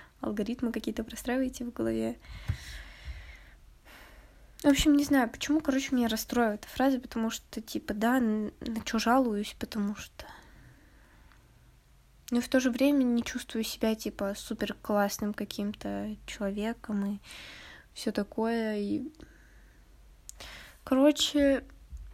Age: 20-39